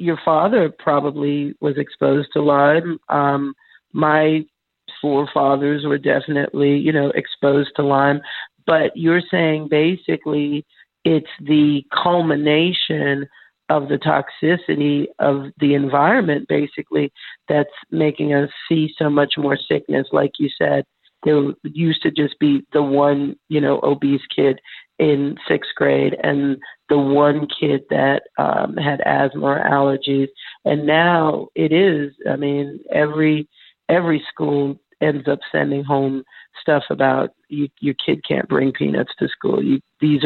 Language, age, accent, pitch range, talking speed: English, 40-59, American, 140-155 Hz, 135 wpm